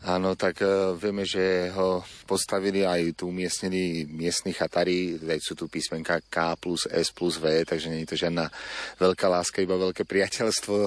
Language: Slovak